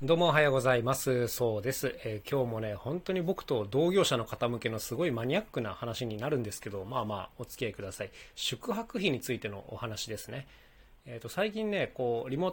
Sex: male